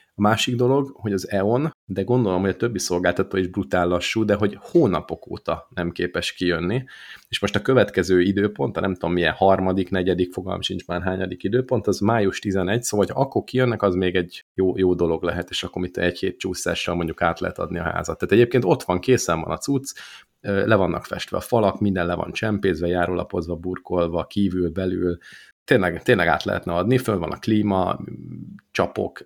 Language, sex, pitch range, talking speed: Hungarian, male, 90-105 Hz, 195 wpm